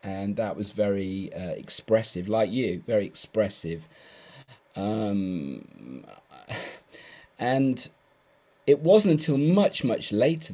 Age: 40-59